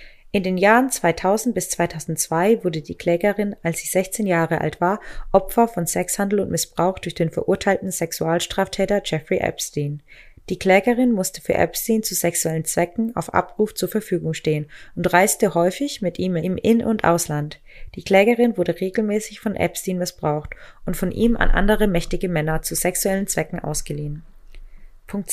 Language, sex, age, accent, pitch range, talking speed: German, female, 20-39, German, 165-205 Hz, 160 wpm